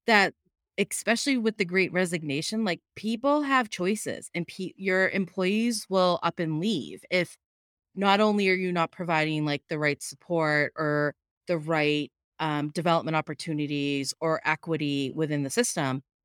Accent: American